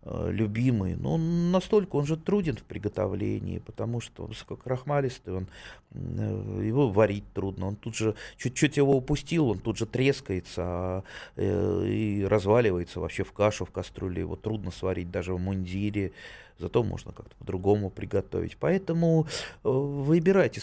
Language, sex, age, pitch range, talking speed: Russian, male, 30-49, 105-150 Hz, 130 wpm